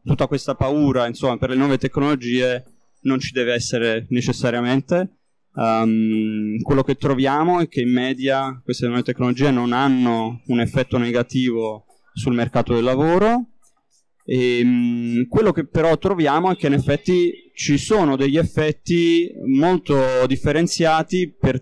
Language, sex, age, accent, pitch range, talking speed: Italian, male, 20-39, native, 120-150 Hz, 140 wpm